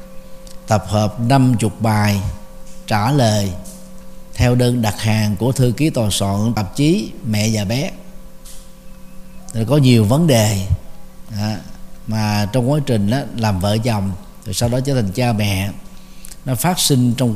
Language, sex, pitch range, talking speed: Vietnamese, male, 105-140 Hz, 150 wpm